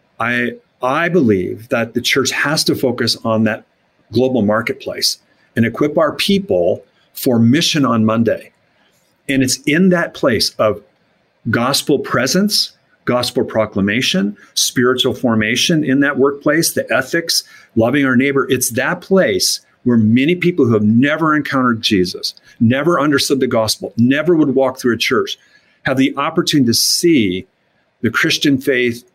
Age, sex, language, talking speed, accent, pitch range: 50-69, male, English, 145 wpm, American, 110-140 Hz